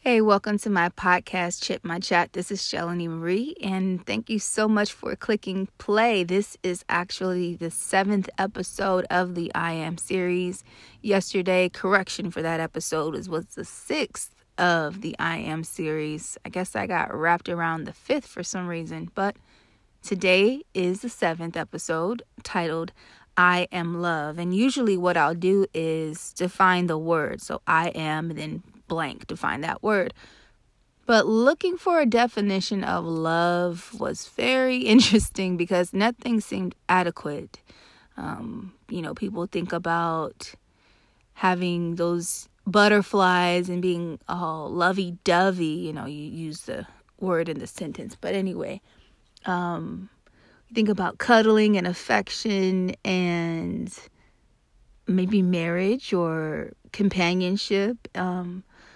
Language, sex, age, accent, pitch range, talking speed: English, female, 20-39, American, 170-205 Hz, 135 wpm